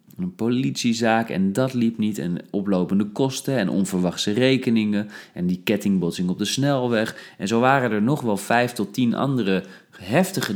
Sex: male